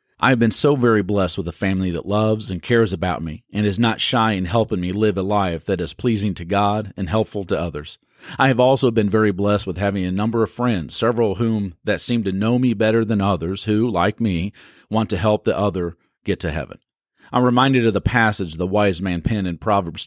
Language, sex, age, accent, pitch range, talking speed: English, male, 40-59, American, 95-115 Hz, 240 wpm